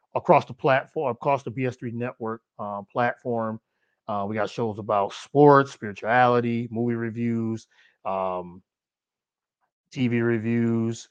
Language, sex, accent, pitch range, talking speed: English, male, American, 110-135 Hz, 115 wpm